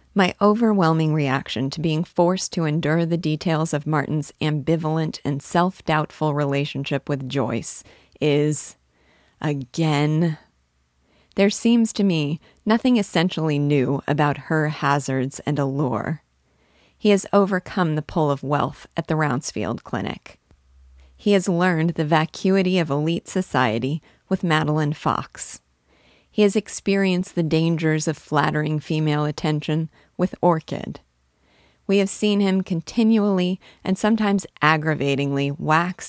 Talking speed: 125 wpm